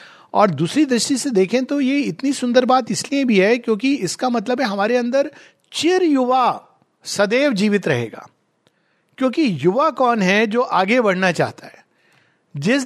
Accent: native